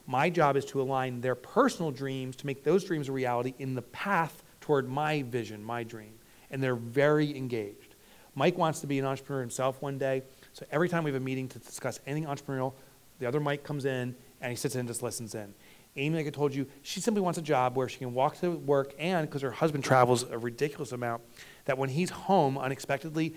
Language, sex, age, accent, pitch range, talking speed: English, male, 30-49, American, 120-145 Hz, 225 wpm